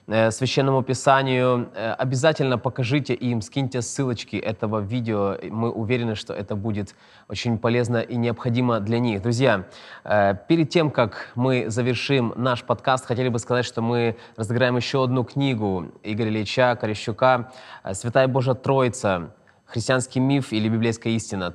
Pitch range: 110-130 Hz